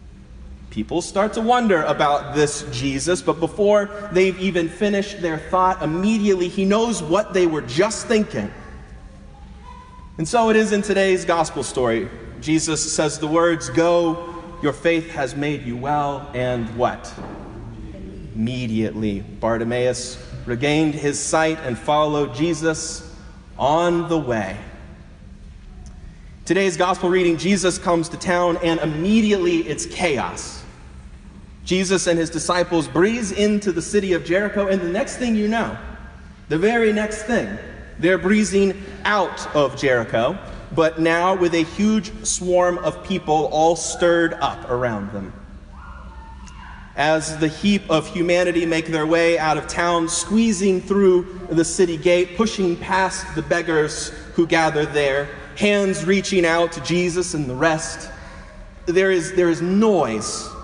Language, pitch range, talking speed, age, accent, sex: English, 145-185 Hz, 140 wpm, 30-49, American, male